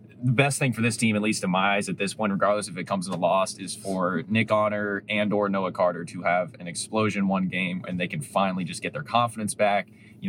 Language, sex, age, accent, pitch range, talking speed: English, male, 20-39, American, 100-120 Hz, 260 wpm